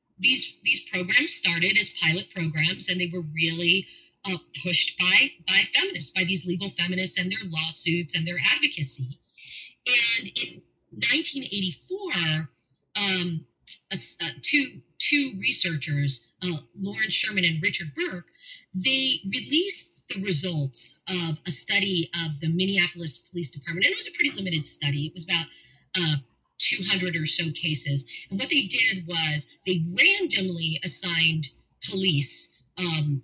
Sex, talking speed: female, 140 wpm